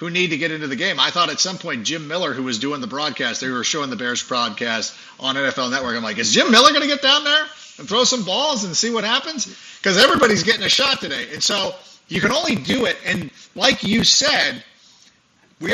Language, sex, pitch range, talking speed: English, male, 155-230 Hz, 245 wpm